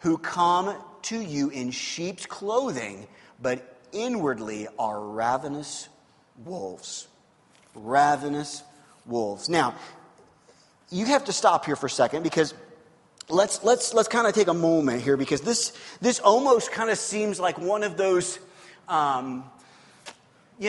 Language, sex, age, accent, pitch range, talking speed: English, male, 30-49, American, 155-215 Hz, 135 wpm